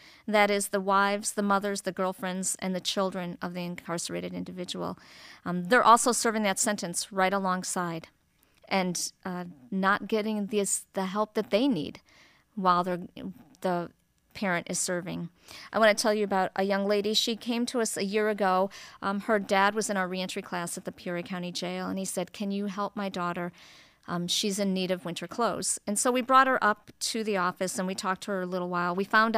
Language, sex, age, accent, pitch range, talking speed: English, female, 40-59, American, 180-210 Hz, 205 wpm